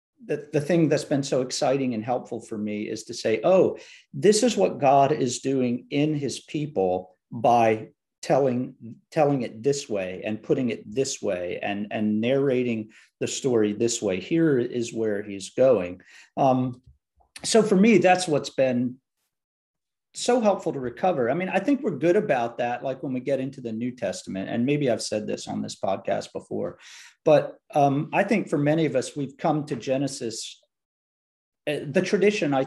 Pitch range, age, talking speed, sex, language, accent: 115-150 Hz, 50-69, 180 wpm, male, English, American